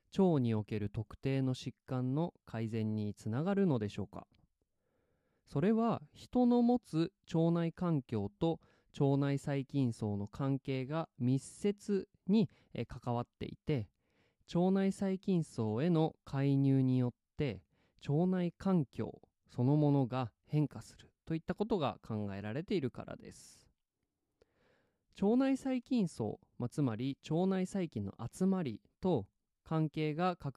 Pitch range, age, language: 120-170 Hz, 20-39, Japanese